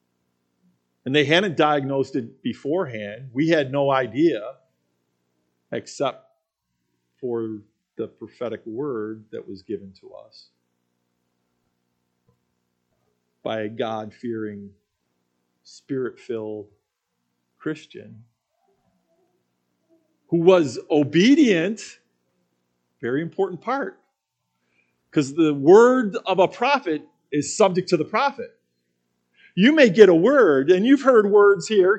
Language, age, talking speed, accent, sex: English, 50-69, 100 wpm, American, male